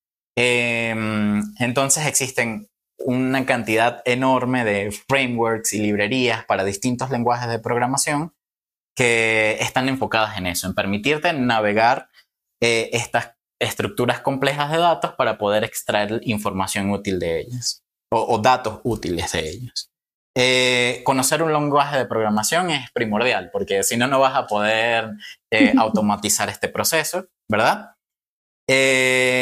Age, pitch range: 20-39, 110-140 Hz